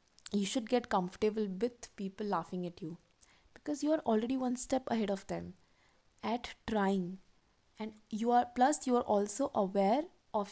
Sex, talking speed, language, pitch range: female, 165 wpm, Hindi, 185-245 Hz